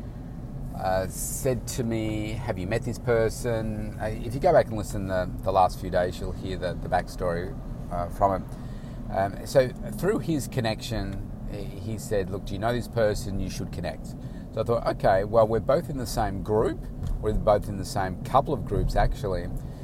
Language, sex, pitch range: English, male, 95-120 Hz